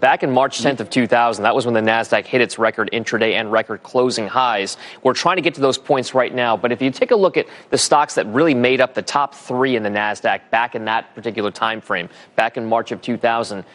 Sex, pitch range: male, 115-150 Hz